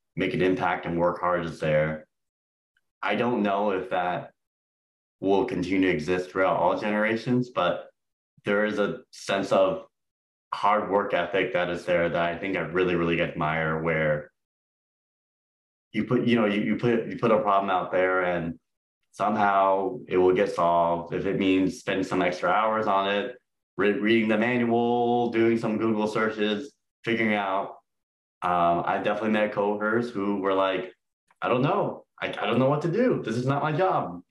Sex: male